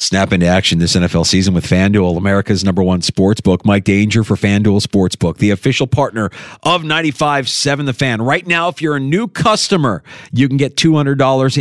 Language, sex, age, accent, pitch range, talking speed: English, male, 40-59, American, 115-150 Hz, 185 wpm